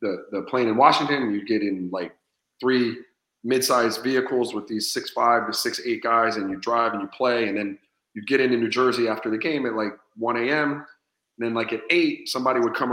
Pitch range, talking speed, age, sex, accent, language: 110-135 Hz, 230 wpm, 30-49, male, American, English